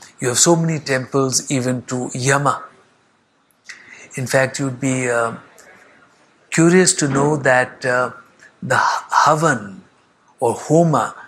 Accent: Indian